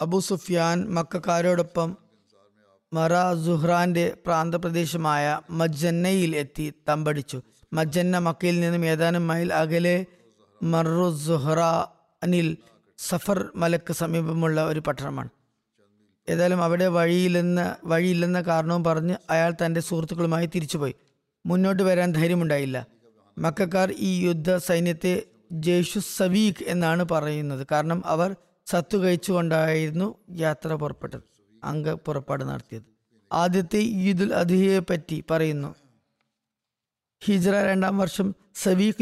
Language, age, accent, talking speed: Malayalam, 20-39, native, 90 wpm